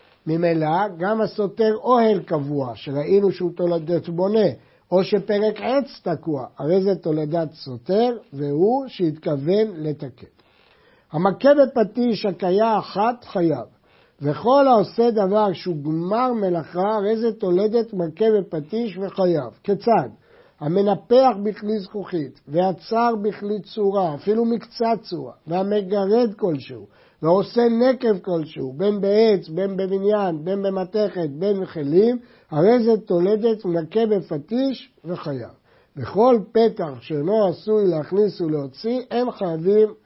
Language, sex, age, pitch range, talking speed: Hebrew, male, 60-79, 165-220 Hz, 110 wpm